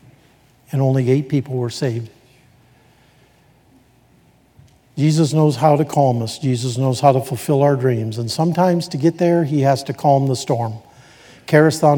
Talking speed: 160 wpm